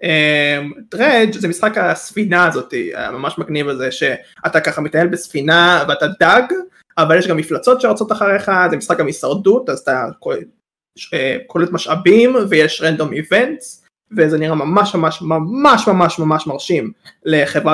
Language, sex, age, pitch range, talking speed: Hebrew, male, 20-39, 160-205 Hz, 140 wpm